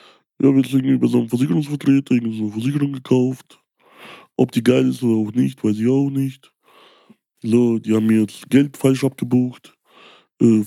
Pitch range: 95-140 Hz